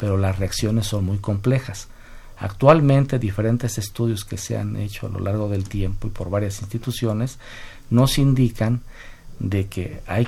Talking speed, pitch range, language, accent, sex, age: 160 wpm, 100-120 Hz, Spanish, Mexican, male, 50-69